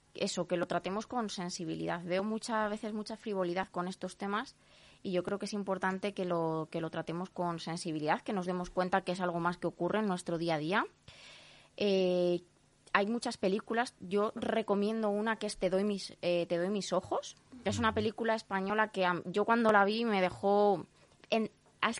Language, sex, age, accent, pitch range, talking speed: Spanish, female, 20-39, Spanish, 180-220 Hz, 200 wpm